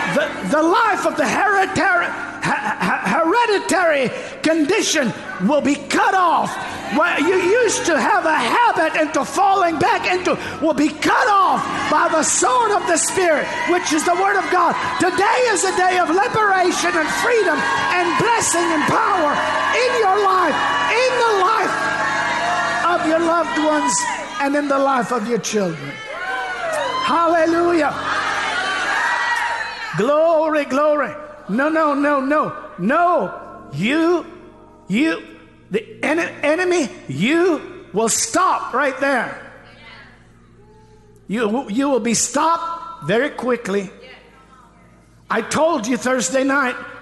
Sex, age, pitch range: male, 50-69, 285-375 Hz